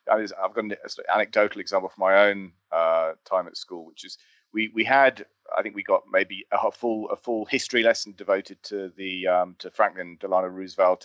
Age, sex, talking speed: 30-49, male, 195 wpm